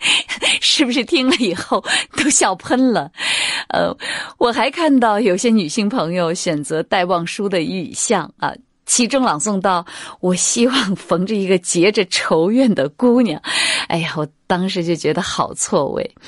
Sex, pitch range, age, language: female, 165-255 Hz, 20-39, Chinese